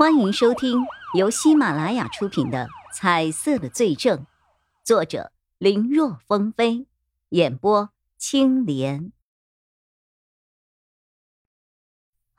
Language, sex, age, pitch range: Chinese, male, 50-69, 170-255 Hz